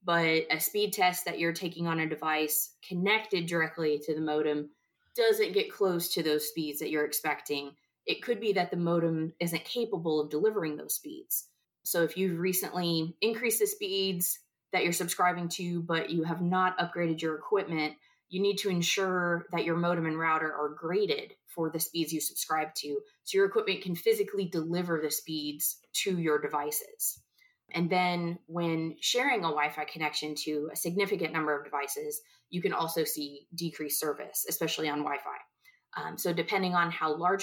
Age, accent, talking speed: 20-39, American, 175 wpm